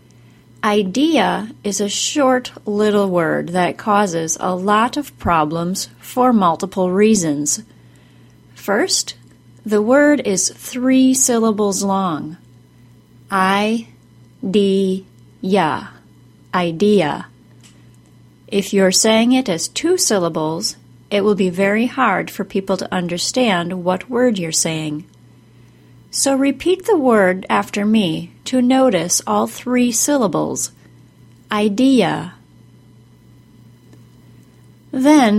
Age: 30-49